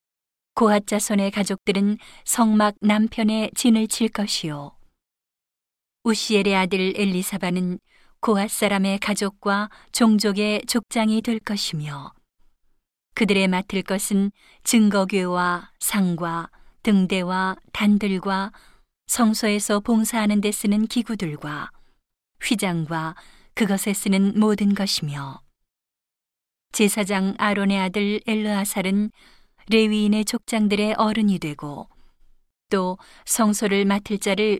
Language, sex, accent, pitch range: Korean, female, native, 190-215 Hz